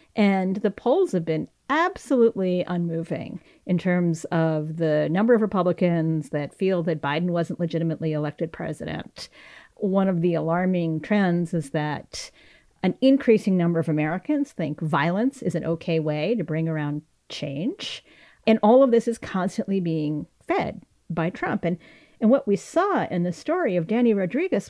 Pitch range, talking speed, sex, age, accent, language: 170-240 Hz, 160 wpm, female, 40-59, American, English